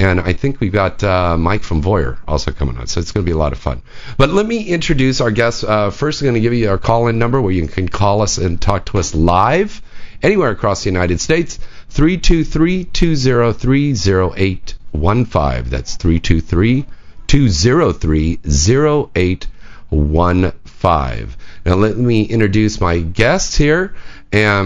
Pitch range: 85-120 Hz